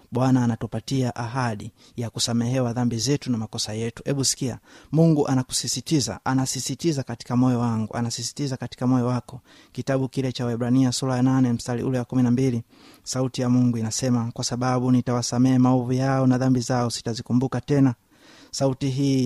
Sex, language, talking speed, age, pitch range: male, Swahili, 145 wpm, 30-49, 120-130 Hz